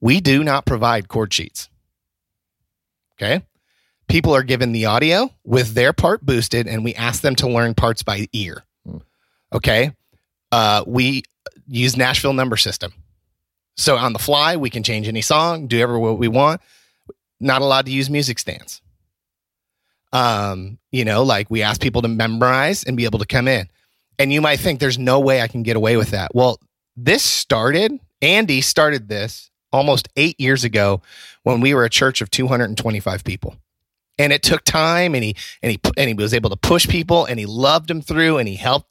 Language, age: English, 30-49